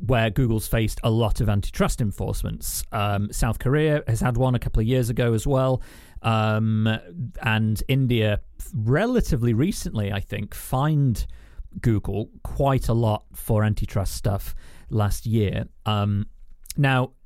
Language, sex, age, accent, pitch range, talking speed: English, male, 40-59, British, 105-130 Hz, 140 wpm